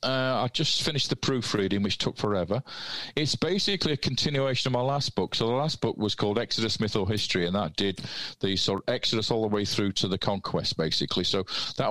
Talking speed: 220 wpm